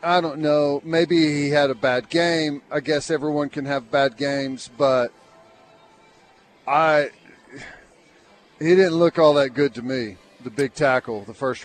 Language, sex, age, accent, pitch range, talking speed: English, male, 40-59, American, 150-195 Hz, 160 wpm